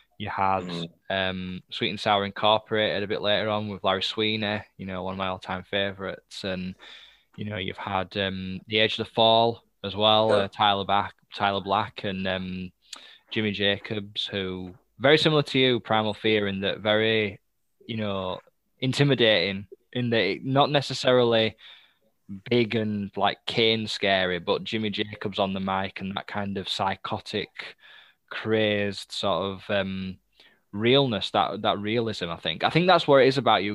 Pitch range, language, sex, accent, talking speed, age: 100-115 Hz, English, male, British, 165 wpm, 10-29